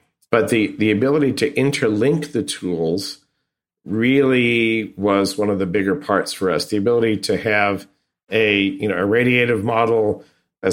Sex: male